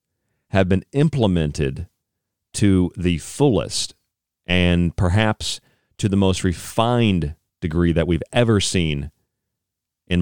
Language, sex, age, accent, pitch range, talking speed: English, male, 40-59, American, 80-100 Hz, 105 wpm